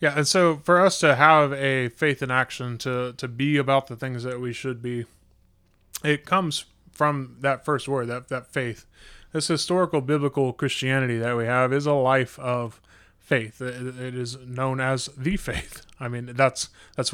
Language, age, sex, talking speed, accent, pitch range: English, 20-39, male, 185 wpm, American, 125-145 Hz